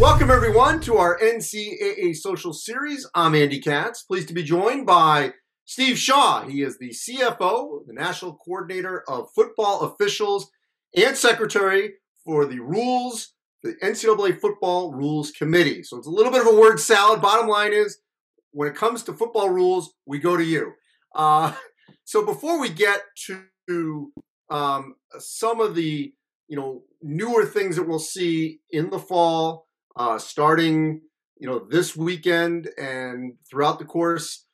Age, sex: 40-59, male